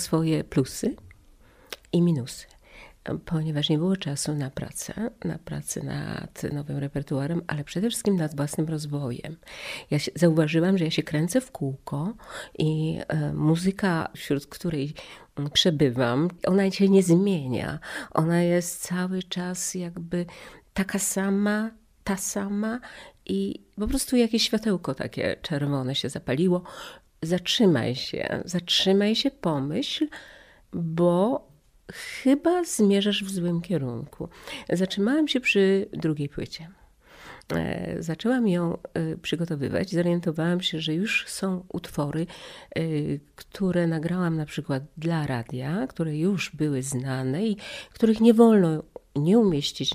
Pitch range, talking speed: 150-195 Hz, 115 wpm